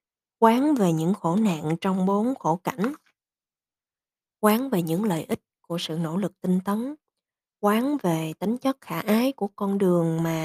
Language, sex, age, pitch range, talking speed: Vietnamese, female, 20-39, 175-225 Hz, 170 wpm